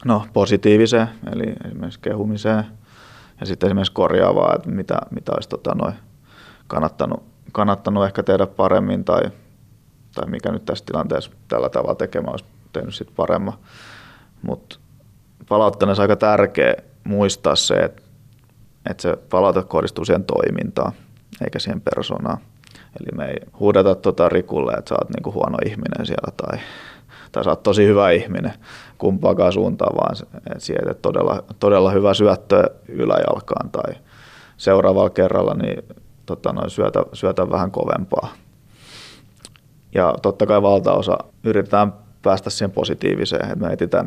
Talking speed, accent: 135 wpm, native